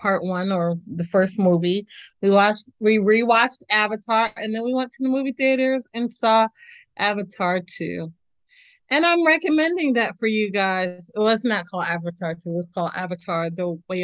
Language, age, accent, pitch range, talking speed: English, 30-49, American, 190-235 Hz, 185 wpm